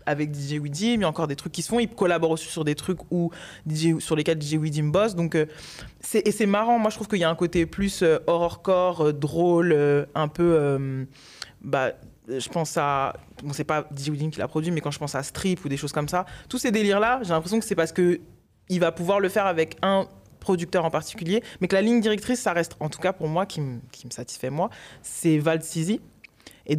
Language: French